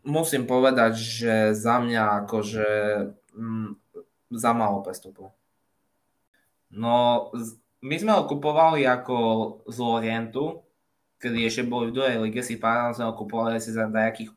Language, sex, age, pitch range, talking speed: Slovak, male, 20-39, 110-130 Hz, 135 wpm